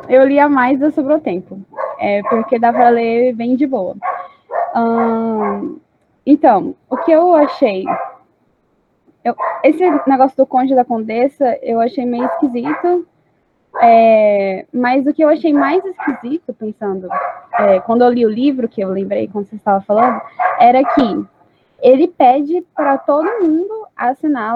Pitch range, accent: 235-295 Hz, Brazilian